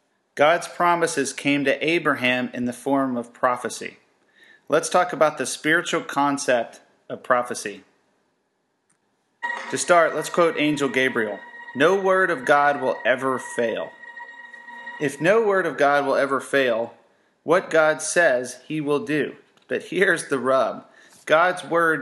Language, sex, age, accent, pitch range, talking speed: English, male, 40-59, American, 135-165 Hz, 140 wpm